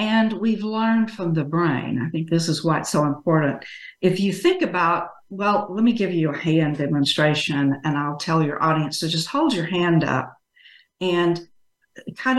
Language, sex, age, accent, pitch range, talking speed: English, female, 60-79, American, 160-215 Hz, 190 wpm